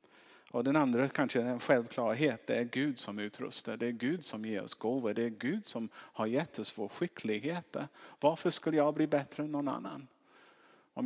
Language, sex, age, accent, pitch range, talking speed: Swedish, male, 50-69, Norwegian, 110-150 Hz, 200 wpm